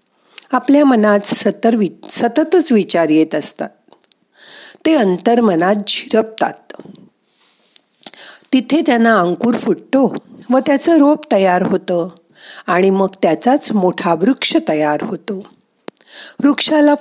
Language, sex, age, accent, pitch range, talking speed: Marathi, female, 50-69, native, 180-250 Hz, 100 wpm